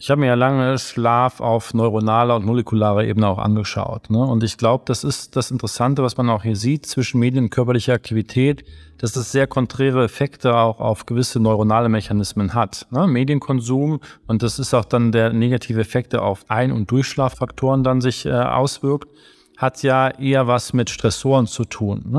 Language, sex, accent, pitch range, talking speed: German, male, German, 115-135 Hz, 175 wpm